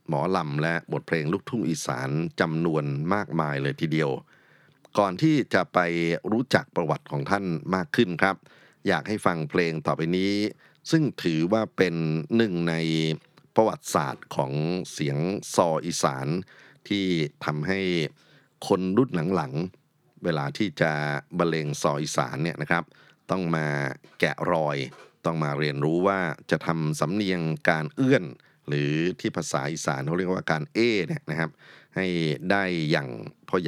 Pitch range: 75-95 Hz